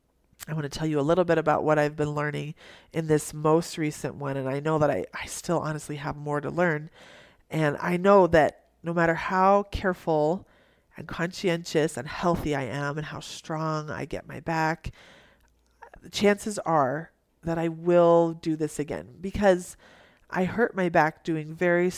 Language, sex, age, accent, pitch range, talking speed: English, female, 40-59, American, 145-170 Hz, 185 wpm